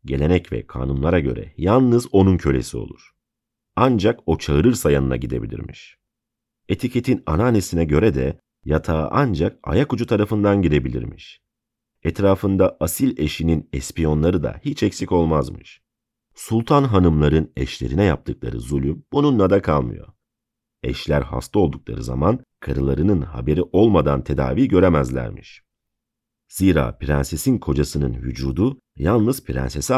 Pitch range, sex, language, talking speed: 70-100 Hz, male, Turkish, 110 wpm